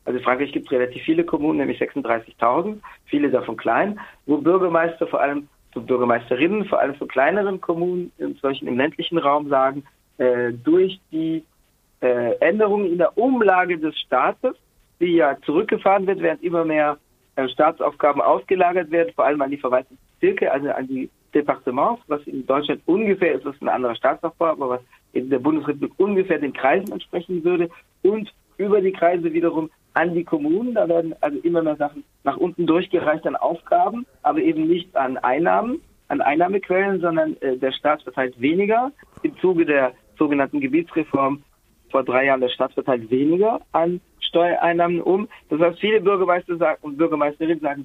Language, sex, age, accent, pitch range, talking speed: German, male, 50-69, German, 140-185 Hz, 165 wpm